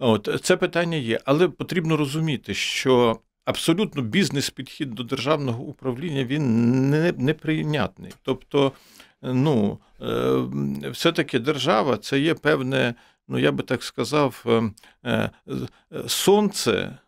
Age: 50-69